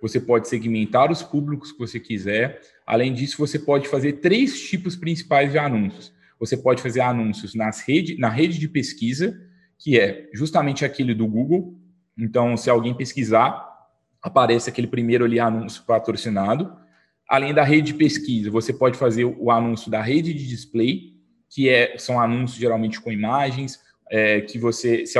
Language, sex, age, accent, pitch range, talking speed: English, male, 20-39, Brazilian, 115-150 Hz, 165 wpm